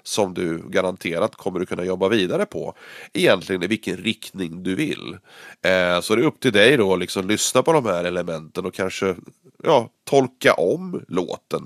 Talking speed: 180 wpm